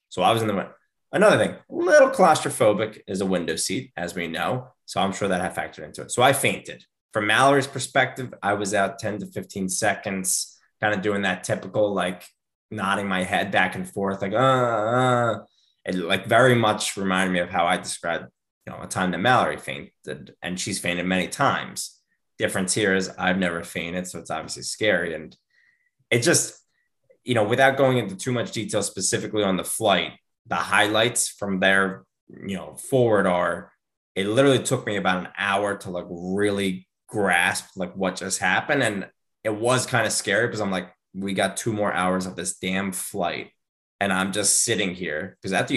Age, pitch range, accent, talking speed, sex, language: 20-39, 90-115 Hz, American, 195 wpm, male, English